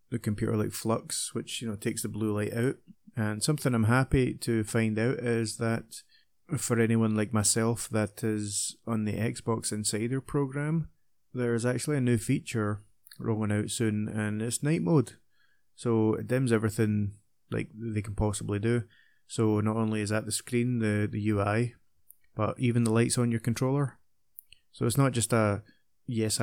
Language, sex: English, male